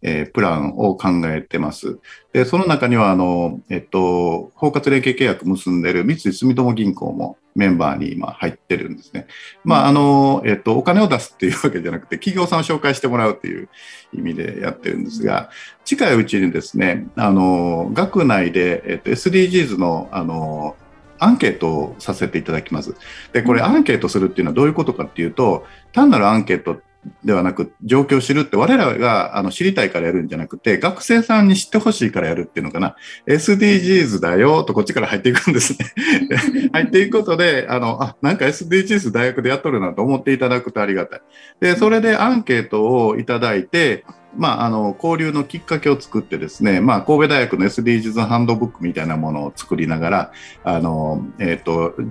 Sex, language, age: male, Japanese, 50-69